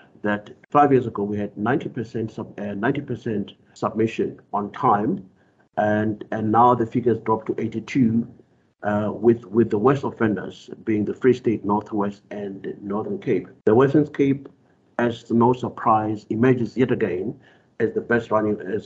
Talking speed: 155 wpm